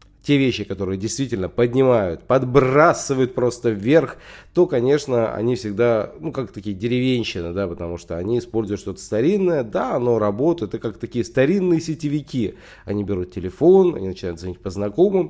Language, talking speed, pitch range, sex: Russian, 155 wpm, 100-125 Hz, male